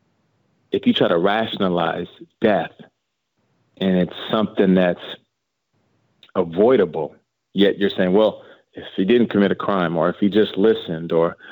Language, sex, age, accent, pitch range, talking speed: English, male, 30-49, American, 90-105 Hz, 140 wpm